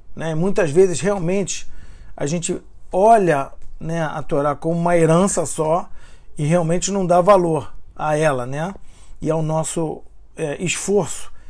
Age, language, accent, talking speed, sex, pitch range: 40-59, Portuguese, Brazilian, 135 wpm, male, 155-200 Hz